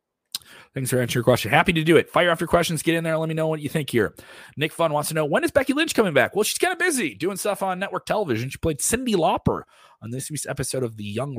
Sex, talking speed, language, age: male, 290 wpm, English, 30-49